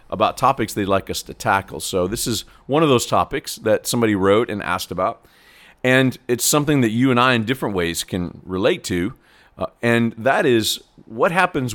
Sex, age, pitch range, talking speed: male, 40-59, 95-120 Hz, 200 wpm